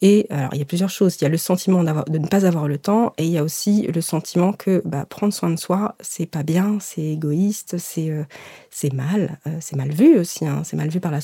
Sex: female